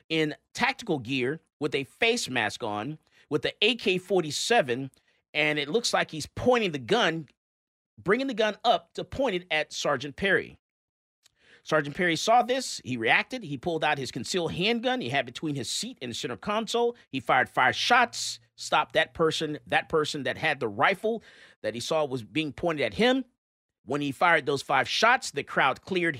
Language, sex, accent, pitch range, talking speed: English, male, American, 150-200 Hz, 185 wpm